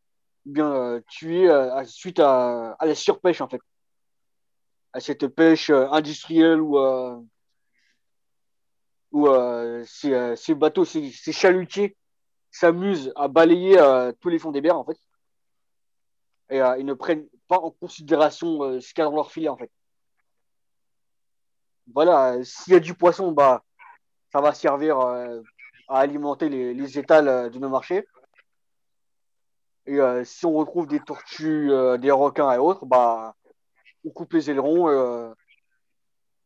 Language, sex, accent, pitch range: French, male, French, 125-160 Hz